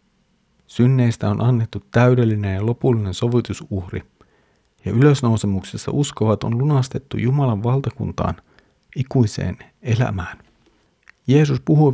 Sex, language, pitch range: male, Finnish, 105-135 Hz